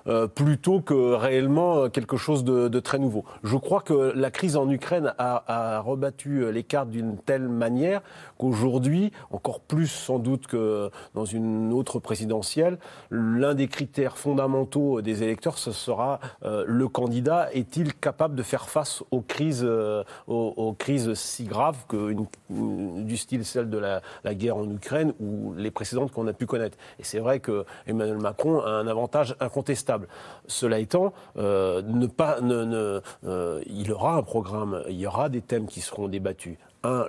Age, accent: 40-59, French